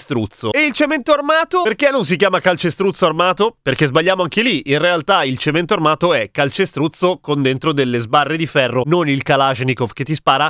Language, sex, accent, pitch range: Italian, male, native, 145-185 Hz